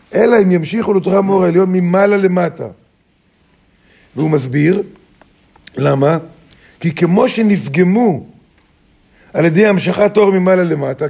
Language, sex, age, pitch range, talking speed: Hebrew, male, 50-69, 155-195 Hz, 110 wpm